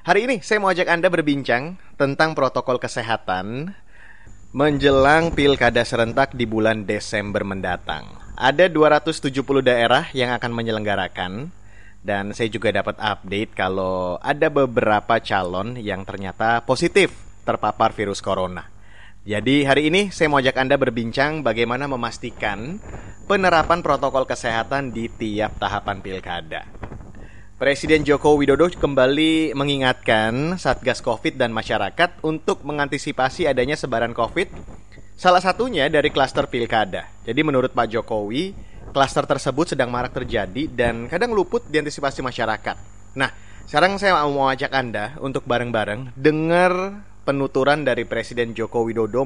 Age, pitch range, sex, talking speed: 30-49, 105-145 Hz, male, 125 wpm